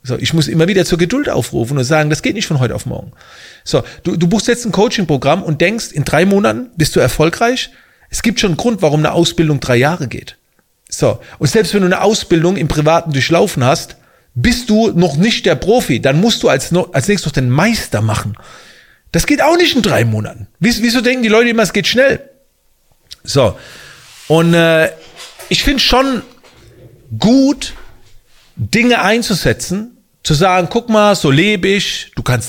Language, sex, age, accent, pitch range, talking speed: German, male, 40-59, German, 135-220 Hz, 190 wpm